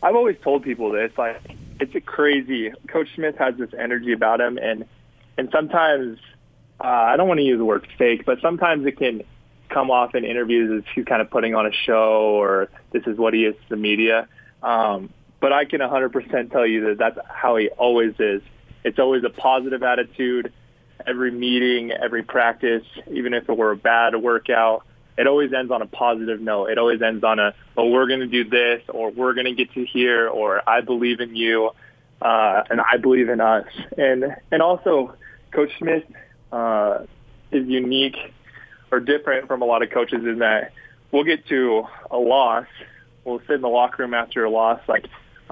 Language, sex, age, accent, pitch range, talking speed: English, male, 20-39, American, 115-130 Hz, 200 wpm